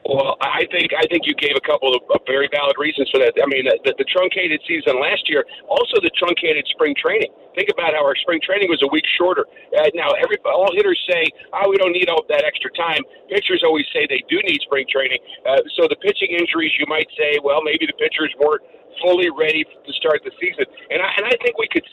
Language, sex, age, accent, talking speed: English, male, 50-69, American, 240 wpm